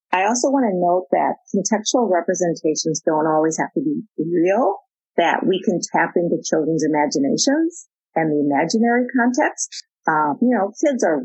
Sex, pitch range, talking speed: female, 170-235 Hz, 160 wpm